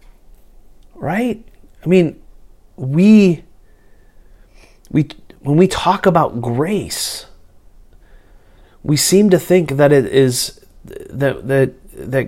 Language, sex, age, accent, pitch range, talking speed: English, male, 30-49, American, 120-160 Hz, 100 wpm